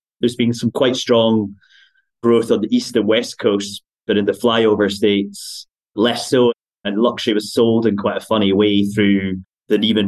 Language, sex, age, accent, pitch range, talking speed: English, male, 30-49, British, 95-115 Hz, 185 wpm